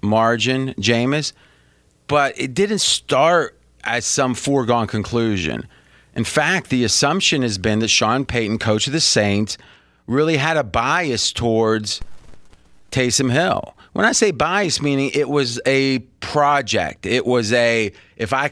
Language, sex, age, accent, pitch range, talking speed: English, male, 30-49, American, 105-130 Hz, 145 wpm